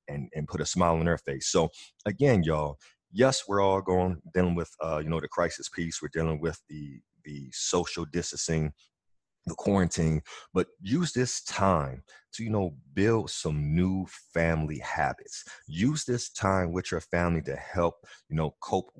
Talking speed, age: 175 wpm, 30-49